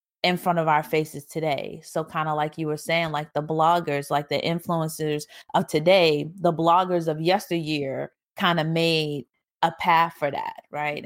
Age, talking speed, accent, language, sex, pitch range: 30-49, 180 wpm, American, English, female, 145-165 Hz